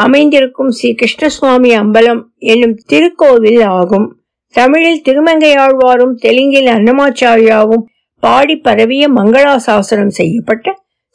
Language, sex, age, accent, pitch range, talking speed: Tamil, female, 50-69, native, 230-285 Hz, 70 wpm